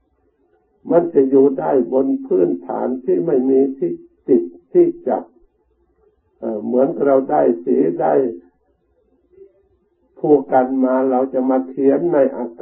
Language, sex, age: Thai, male, 60-79